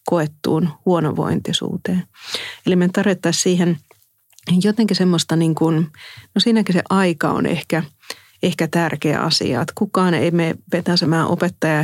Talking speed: 120 wpm